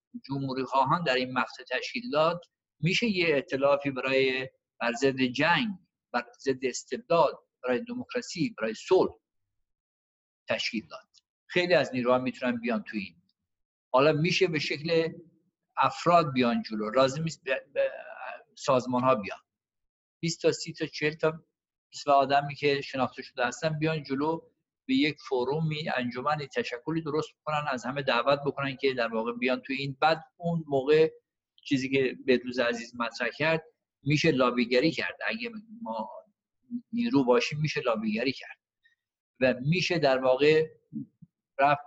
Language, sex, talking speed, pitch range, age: Persian, male, 135 wpm, 125-170 Hz, 50-69